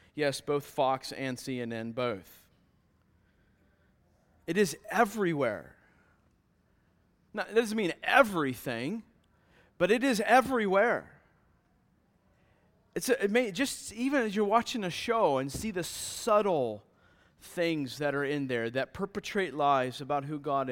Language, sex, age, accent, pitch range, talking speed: English, male, 30-49, American, 130-215 Hz, 125 wpm